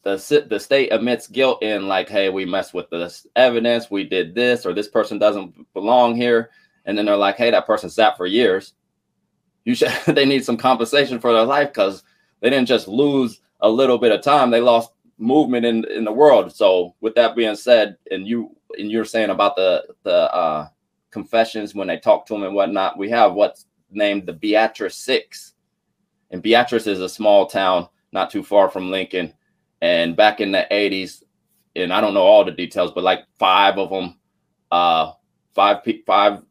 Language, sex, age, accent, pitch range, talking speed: English, male, 20-39, American, 100-125 Hz, 195 wpm